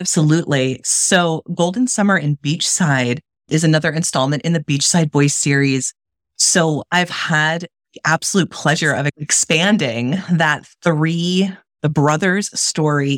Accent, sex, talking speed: American, female, 125 wpm